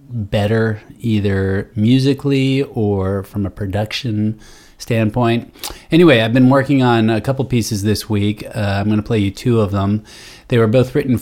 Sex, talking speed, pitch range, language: male, 165 wpm, 100-120 Hz, English